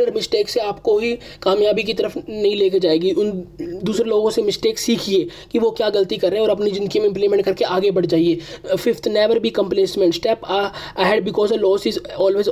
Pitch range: 195-235 Hz